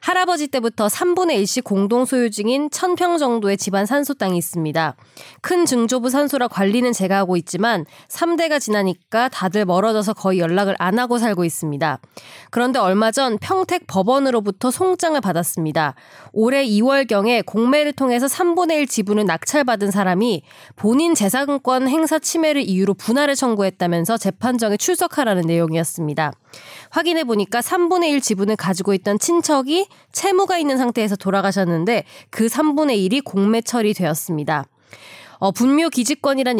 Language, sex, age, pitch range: Korean, female, 20-39, 195-270 Hz